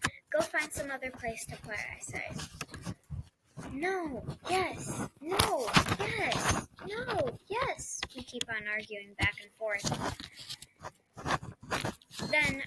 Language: English